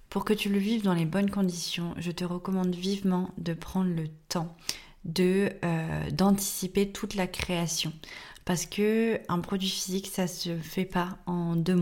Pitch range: 170-200 Hz